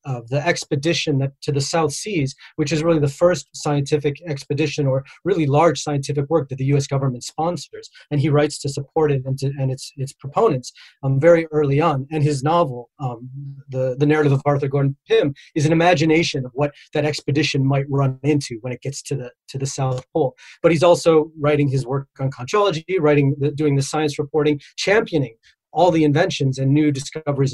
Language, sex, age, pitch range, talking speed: English, male, 30-49, 140-160 Hz, 200 wpm